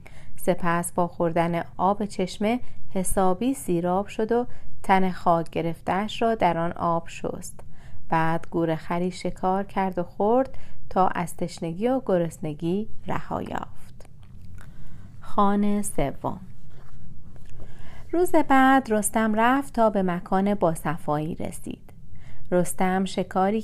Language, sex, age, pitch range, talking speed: Persian, female, 30-49, 170-210 Hz, 110 wpm